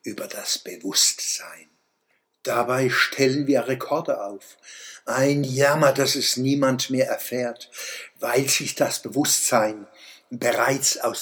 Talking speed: 110 wpm